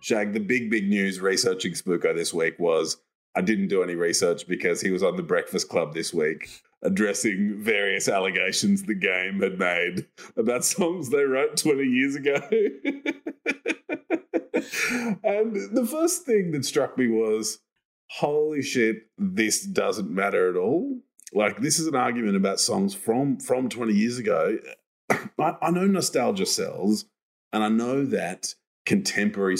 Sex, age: male, 30-49